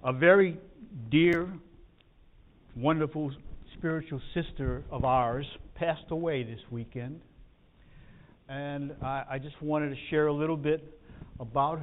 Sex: male